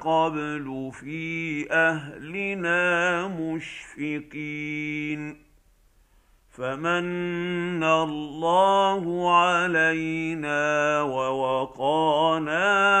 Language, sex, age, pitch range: Arabic, male, 50-69, 150-175 Hz